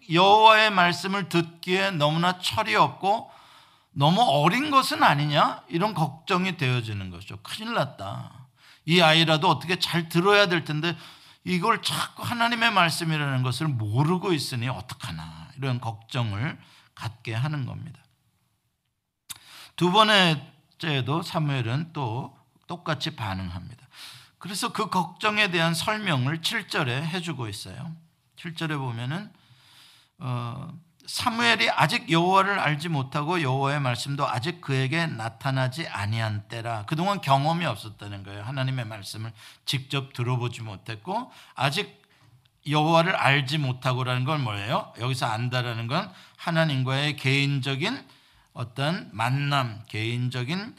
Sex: male